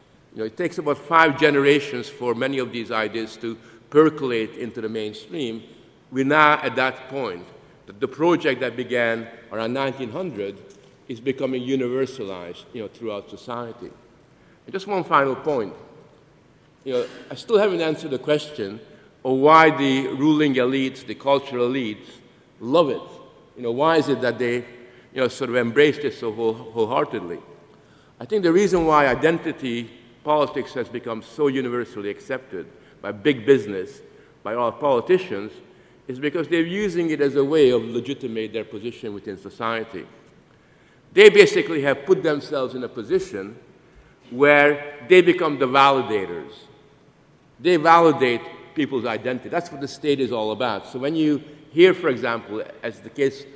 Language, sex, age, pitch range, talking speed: English, male, 50-69, 120-155 Hz, 155 wpm